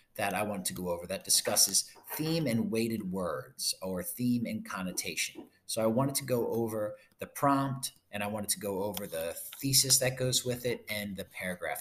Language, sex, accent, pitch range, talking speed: English, male, American, 95-120 Hz, 200 wpm